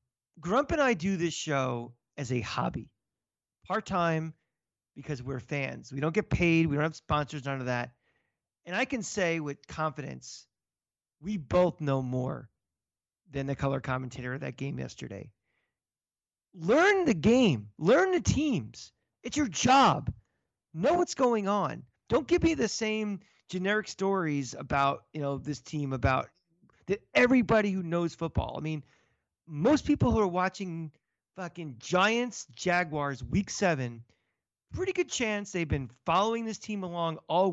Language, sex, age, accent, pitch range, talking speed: English, male, 40-59, American, 140-195 Hz, 150 wpm